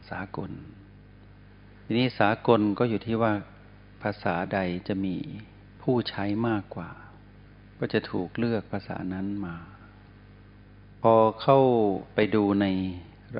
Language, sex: Thai, male